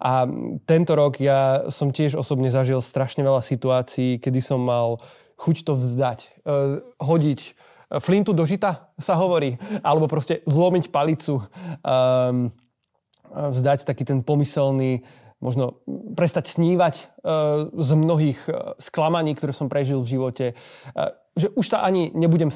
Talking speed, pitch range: 125 wpm, 130-155 Hz